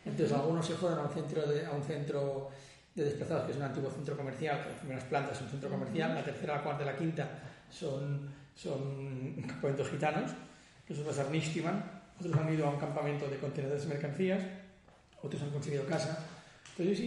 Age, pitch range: 30-49, 135-165 Hz